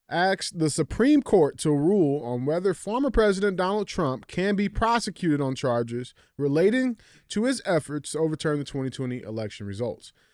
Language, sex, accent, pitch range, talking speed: English, male, American, 135-185 Hz, 155 wpm